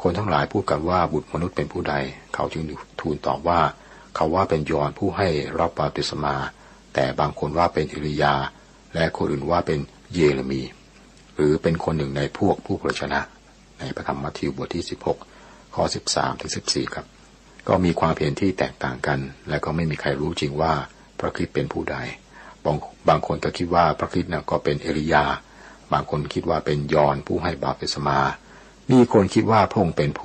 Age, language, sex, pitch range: 60-79, Thai, male, 70-85 Hz